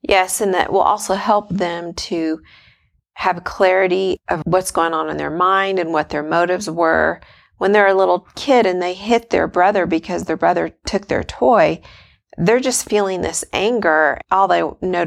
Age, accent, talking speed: 40-59, American, 185 wpm